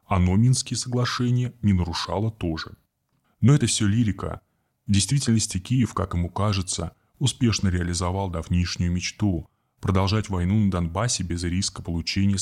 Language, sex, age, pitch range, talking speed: Russian, male, 20-39, 90-120 Hz, 130 wpm